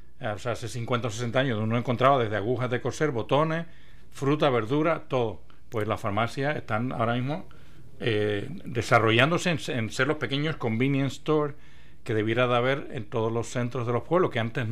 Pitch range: 115-135 Hz